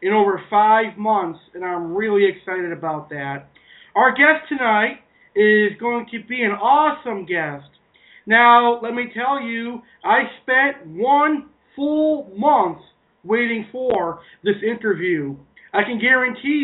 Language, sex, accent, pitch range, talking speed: English, male, American, 205-275 Hz, 135 wpm